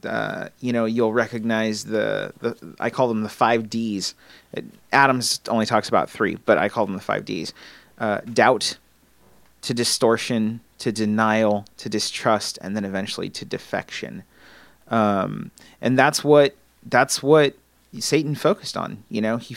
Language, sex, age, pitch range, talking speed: English, male, 30-49, 115-150 Hz, 155 wpm